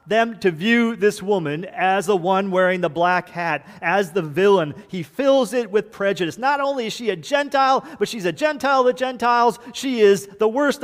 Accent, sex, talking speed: American, male, 205 wpm